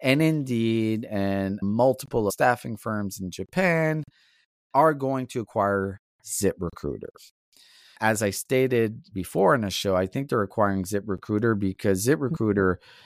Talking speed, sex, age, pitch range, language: 130 wpm, male, 30-49, 95-125 Hz, English